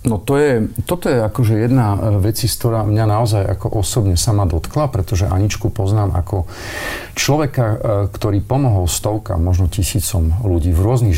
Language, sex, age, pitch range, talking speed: Slovak, male, 40-59, 90-115 Hz, 155 wpm